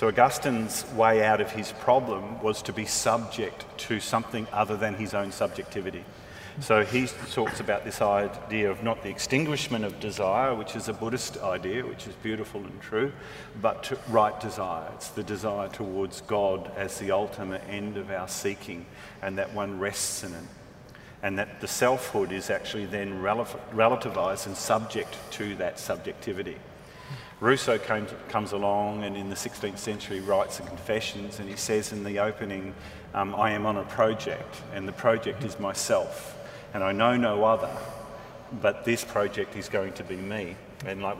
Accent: Australian